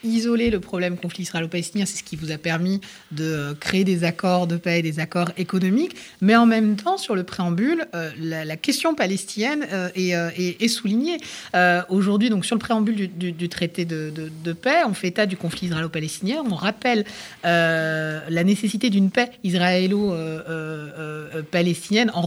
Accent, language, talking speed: French, French, 185 wpm